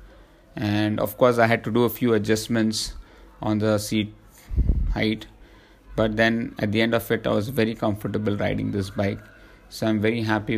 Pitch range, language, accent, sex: 100-110 Hz, English, Indian, male